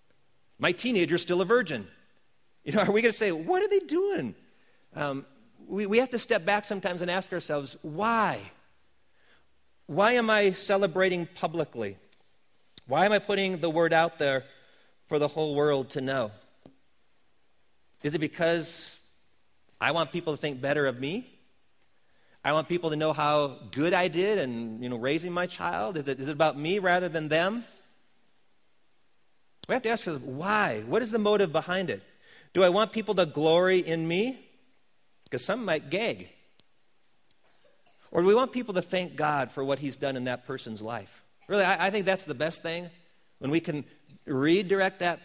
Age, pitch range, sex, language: 40-59, 135-185 Hz, male, English